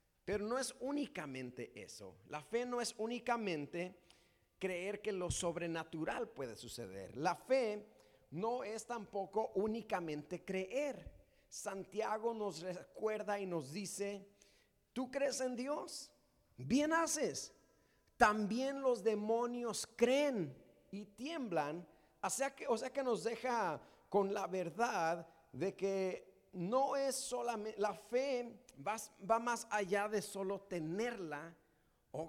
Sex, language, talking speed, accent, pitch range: male, Spanish, 120 wpm, Mexican, 170-230 Hz